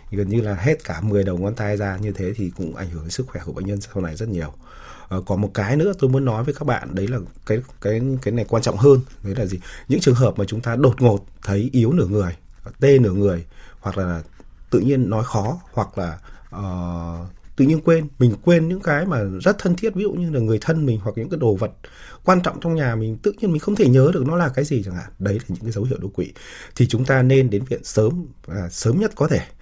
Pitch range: 100-130 Hz